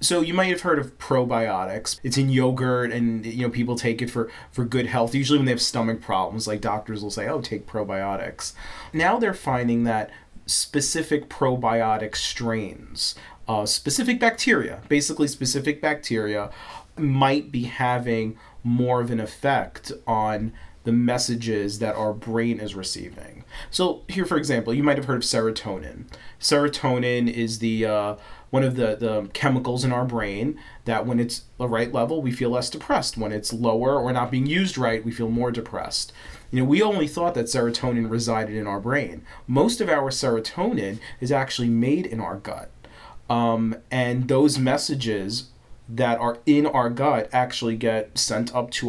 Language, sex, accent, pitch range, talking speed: English, male, American, 115-135 Hz, 170 wpm